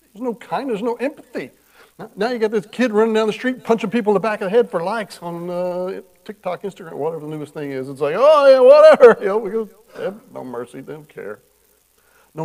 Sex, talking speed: male, 230 wpm